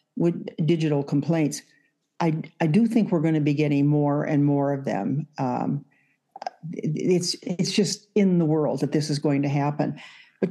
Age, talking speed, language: 60-79, 175 wpm, English